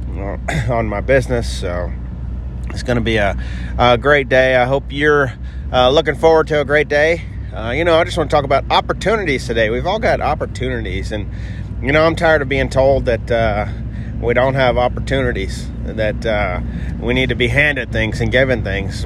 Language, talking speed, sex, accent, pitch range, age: English, 195 wpm, male, American, 105-135 Hz, 30-49